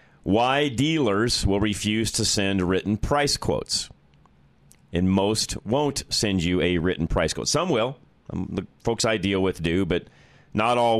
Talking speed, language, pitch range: 160 wpm, English, 90-115 Hz